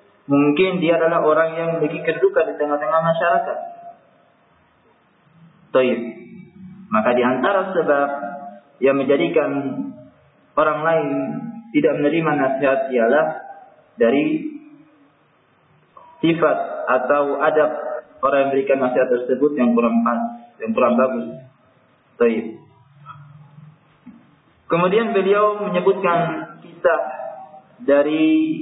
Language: Indonesian